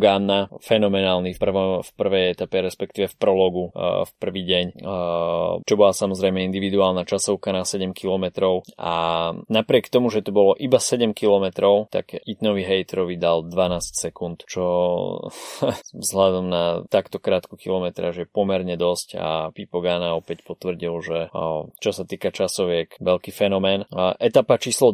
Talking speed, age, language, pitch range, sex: 135 wpm, 20-39, Slovak, 90-100 Hz, male